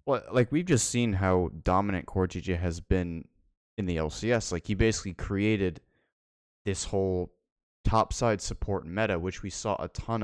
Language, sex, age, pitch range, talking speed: English, male, 20-39, 90-105 Hz, 160 wpm